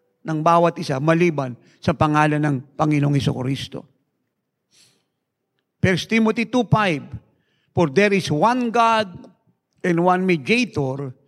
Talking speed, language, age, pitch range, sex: 105 wpm, English, 50-69, 150-210 Hz, male